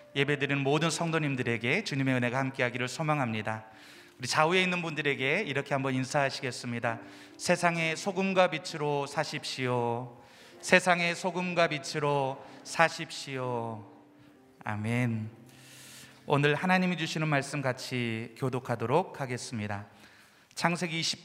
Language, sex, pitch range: Korean, male, 125-160 Hz